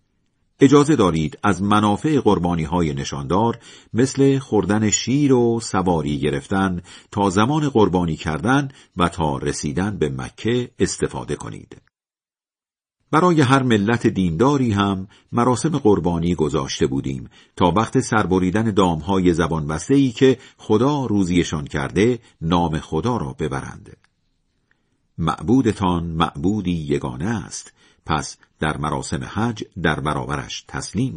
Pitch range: 85-120 Hz